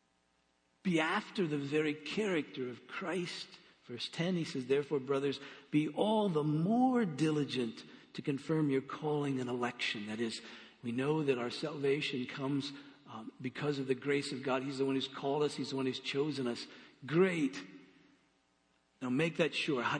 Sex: male